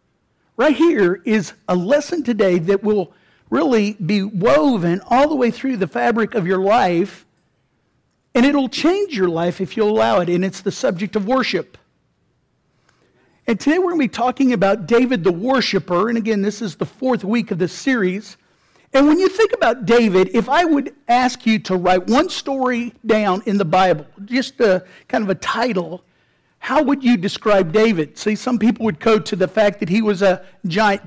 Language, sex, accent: English, male, American